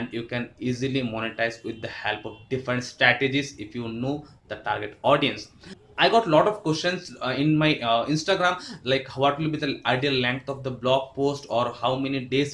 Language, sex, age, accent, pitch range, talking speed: English, male, 20-39, Indian, 120-150 Hz, 205 wpm